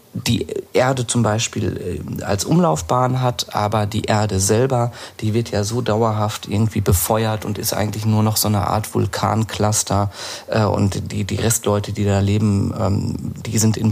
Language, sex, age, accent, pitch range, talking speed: German, male, 40-59, German, 105-115 Hz, 160 wpm